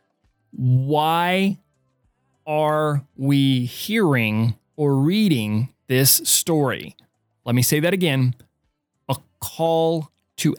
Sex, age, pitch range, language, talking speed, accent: male, 20-39, 130-165 Hz, English, 90 wpm, American